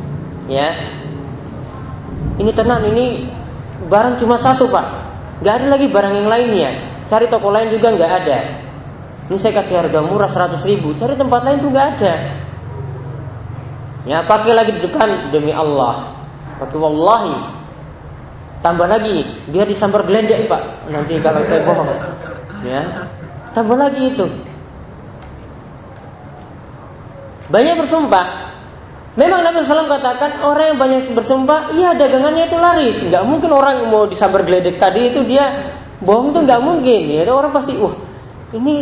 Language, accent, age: Indonesian, native, 20-39